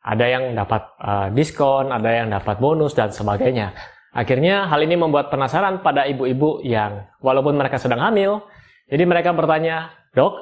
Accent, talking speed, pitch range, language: native, 155 wpm, 120-160 Hz, Indonesian